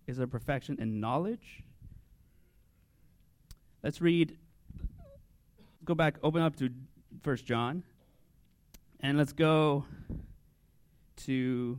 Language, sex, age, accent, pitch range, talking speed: English, male, 30-49, American, 115-155 Hz, 90 wpm